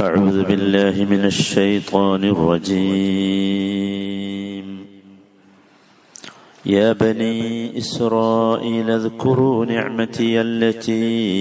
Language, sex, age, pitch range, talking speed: Malayalam, male, 50-69, 95-110 Hz, 60 wpm